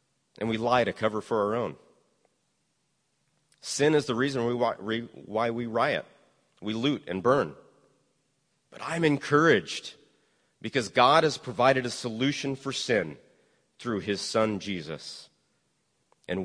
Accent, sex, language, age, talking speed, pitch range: American, male, English, 40-59, 130 wpm, 115-150 Hz